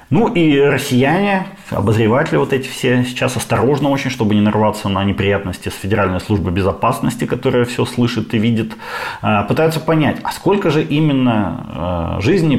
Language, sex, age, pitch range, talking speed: Ukrainian, male, 30-49, 100-125 Hz, 150 wpm